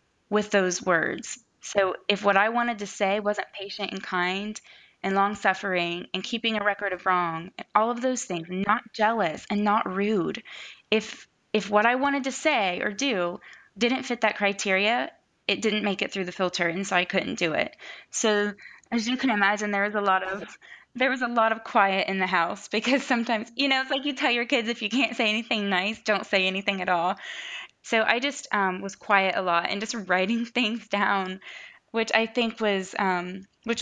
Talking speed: 210 wpm